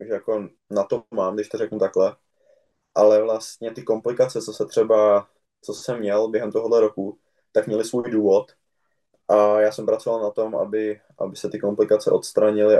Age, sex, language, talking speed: 20-39, male, Czech, 180 wpm